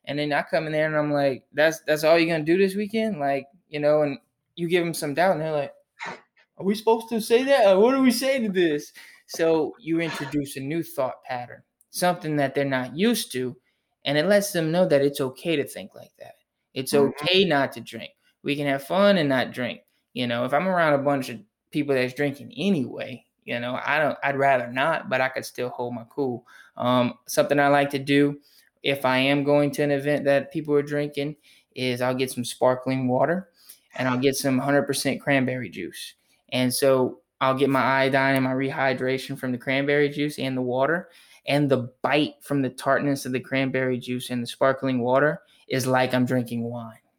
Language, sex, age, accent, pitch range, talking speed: English, male, 20-39, American, 130-150 Hz, 215 wpm